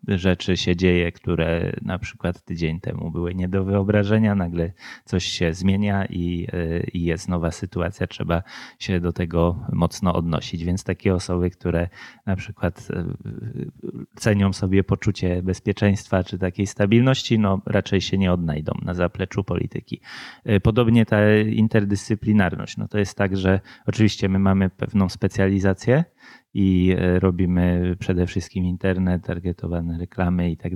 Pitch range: 90-105 Hz